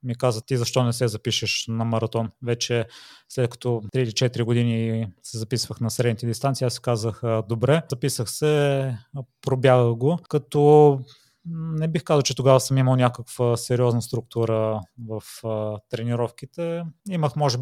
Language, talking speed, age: Bulgarian, 145 wpm, 20-39